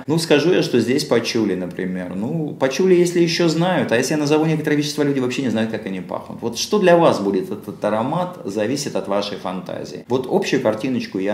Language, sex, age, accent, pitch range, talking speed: Russian, male, 30-49, native, 100-135 Hz, 210 wpm